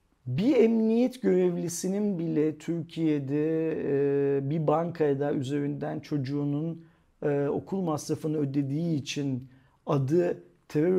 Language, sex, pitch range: Turkish, male, 140-190 Hz